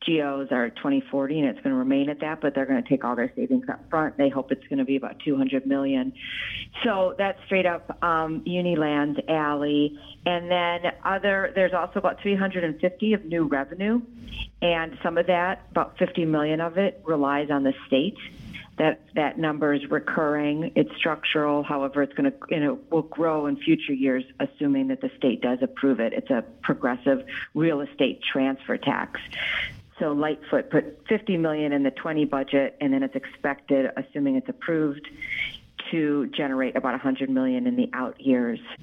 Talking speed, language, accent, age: 180 wpm, English, American, 50-69